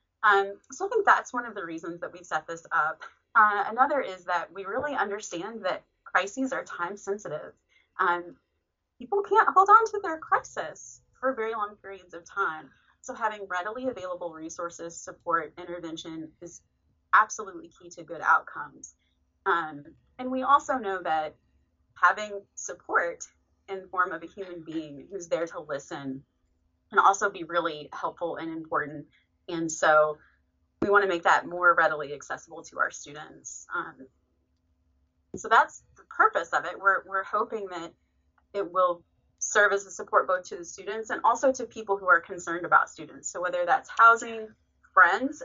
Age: 30-49